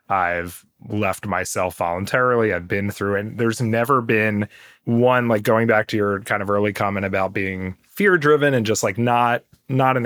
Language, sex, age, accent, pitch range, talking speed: English, male, 30-49, American, 100-115 Hz, 180 wpm